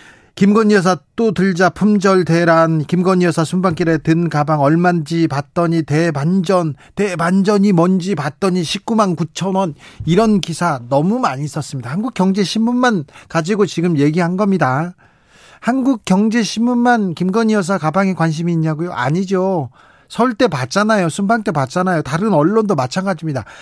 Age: 40-59